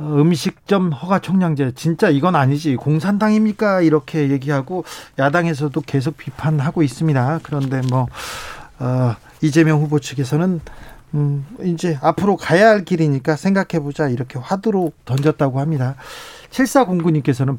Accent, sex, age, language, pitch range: native, male, 40-59, Korean, 135-175 Hz